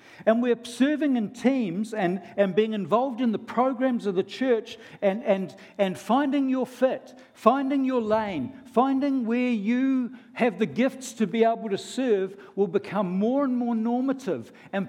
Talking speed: 170 wpm